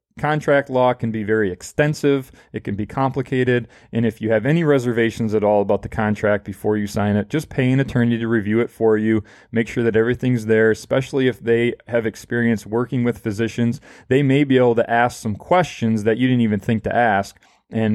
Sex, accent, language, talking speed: male, American, English, 210 wpm